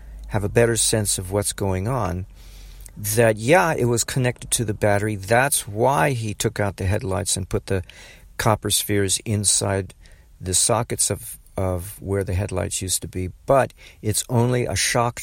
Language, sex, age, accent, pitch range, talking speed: English, male, 50-69, American, 90-120 Hz, 175 wpm